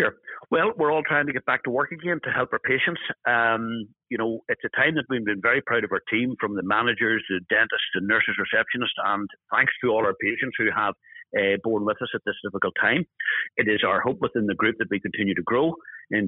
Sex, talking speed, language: male, 245 wpm, English